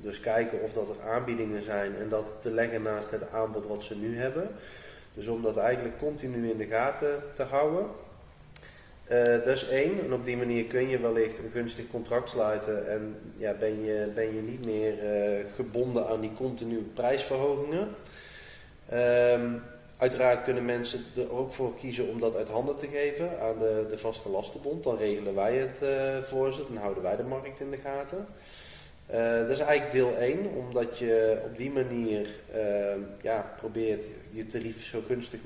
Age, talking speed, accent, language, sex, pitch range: 20-39, 185 wpm, Dutch, Dutch, male, 110-130 Hz